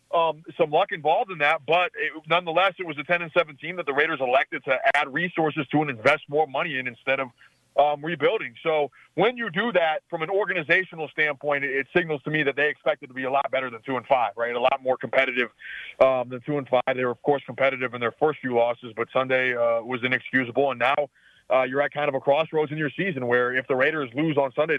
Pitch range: 125-150 Hz